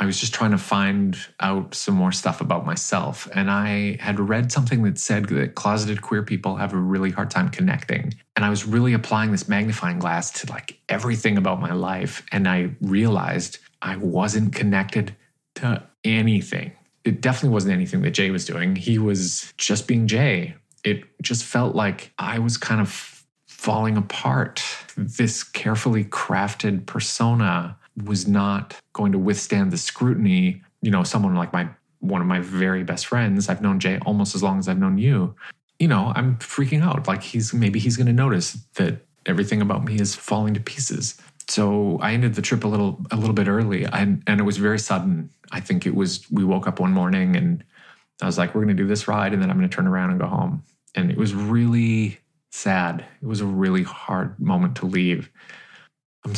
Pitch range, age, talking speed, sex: 100-125 Hz, 30-49, 200 wpm, male